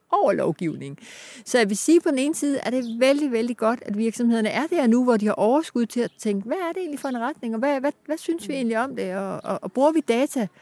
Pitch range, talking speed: 195-255 Hz, 275 wpm